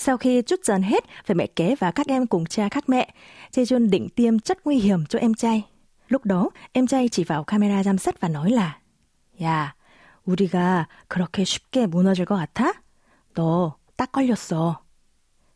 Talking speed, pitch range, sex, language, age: 175 wpm, 175-245 Hz, female, Vietnamese, 20-39